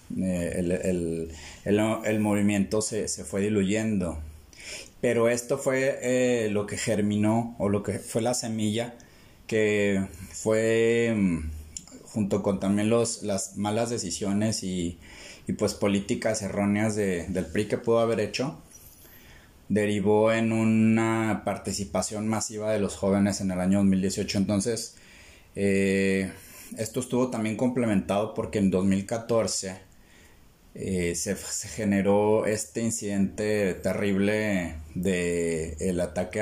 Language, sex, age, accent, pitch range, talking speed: Spanish, male, 30-49, Mexican, 90-110 Hz, 115 wpm